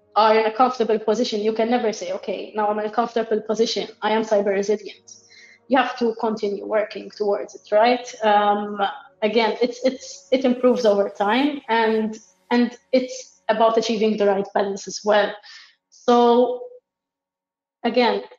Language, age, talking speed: English, 20-39, 155 wpm